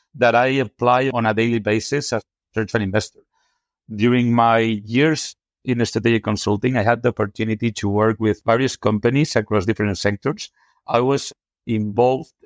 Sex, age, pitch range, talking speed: male, 50-69, 105-125 Hz, 160 wpm